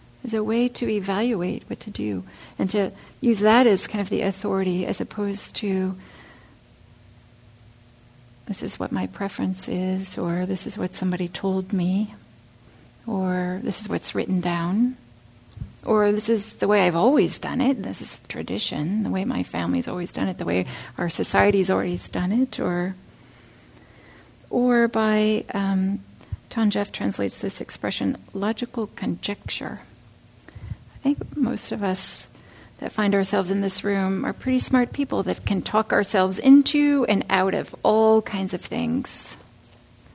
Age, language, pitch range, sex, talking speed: 50-69, English, 175-225 Hz, female, 155 wpm